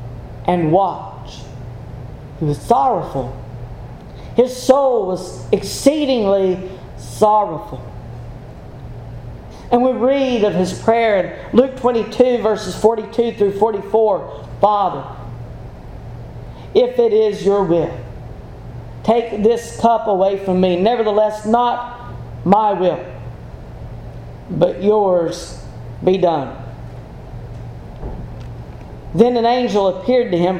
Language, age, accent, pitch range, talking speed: English, 40-59, American, 135-220 Hz, 95 wpm